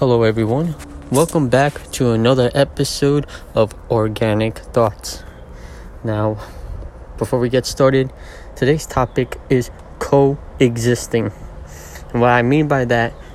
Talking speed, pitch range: 110 wpm, 90-125 Hz